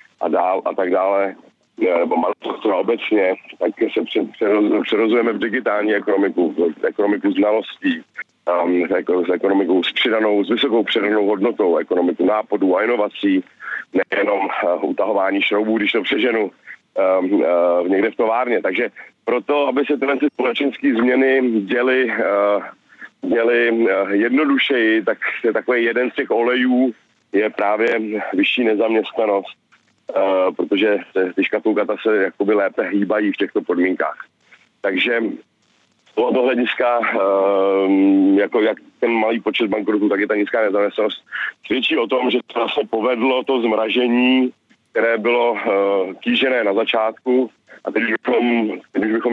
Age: 40-59